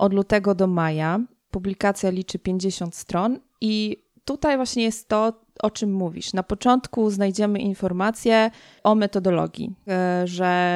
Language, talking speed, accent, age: Polish, 130 wpm, native, 20-39